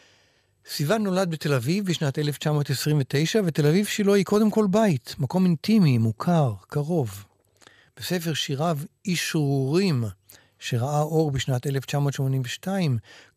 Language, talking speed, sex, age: Hebrew, 110 wpm, male, 60-79